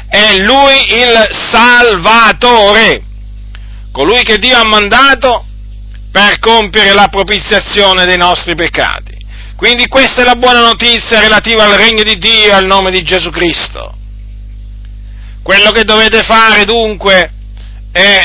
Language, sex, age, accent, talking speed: Italian, male, 50-69, native, 125 wpm